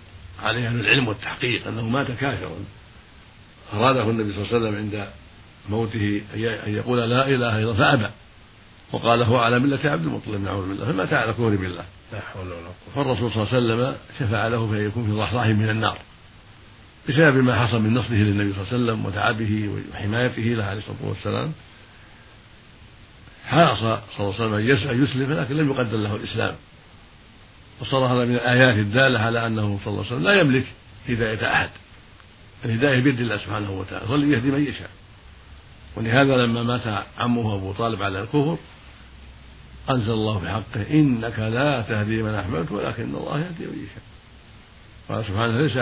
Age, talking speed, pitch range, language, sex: 60-79, 160 wpm, 105-125 Hz, Arabic, male